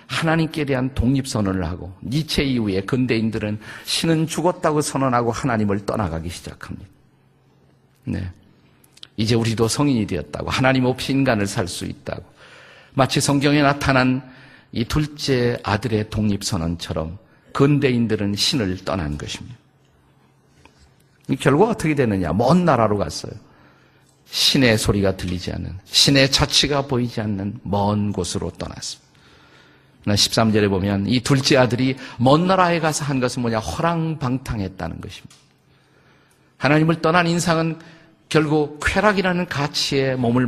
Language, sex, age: Korean, male, 50-69